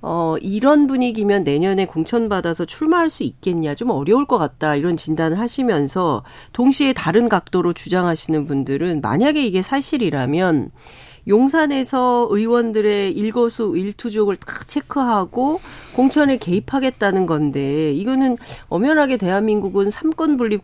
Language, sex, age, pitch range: Korean, female, 40-59, 190-290 Hz